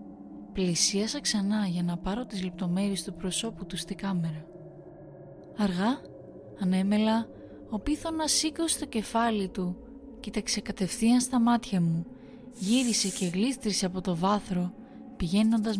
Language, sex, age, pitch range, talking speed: Greek, female, 20-39, 185-240 Hz, 125 wpm